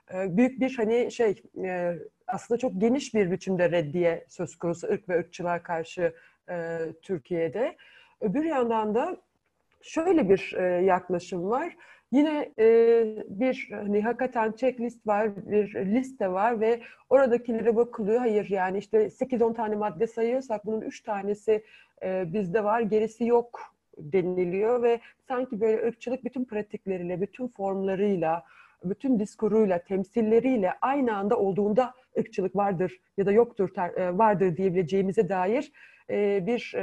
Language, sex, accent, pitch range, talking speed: Turkish, female, native, 190-245 Hz, 120 wpm